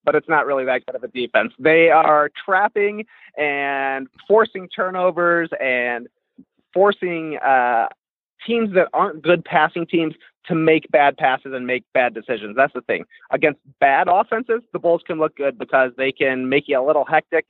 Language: English